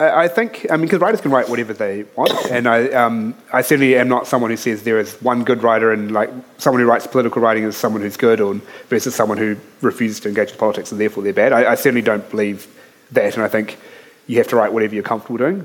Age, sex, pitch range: 30-49, male, 110-130 Hz